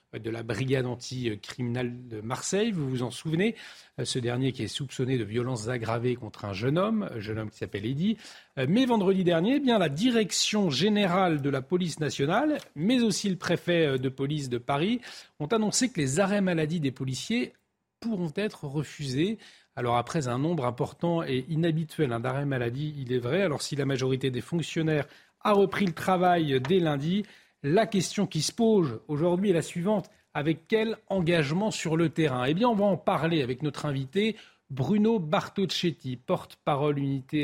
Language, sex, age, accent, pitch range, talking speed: French, male, 40-59, French, 135-195 Hz, 180 wpm